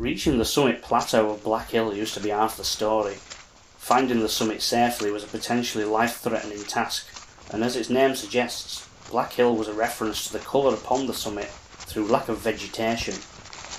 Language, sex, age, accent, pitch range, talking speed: English, male, 30-49, British, 105-120 Hz, 185 wpm